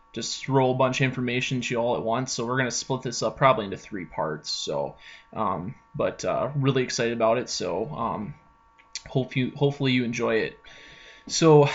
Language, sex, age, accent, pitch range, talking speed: English, male, 20-39, American, 125-150 Hz, 200 wpm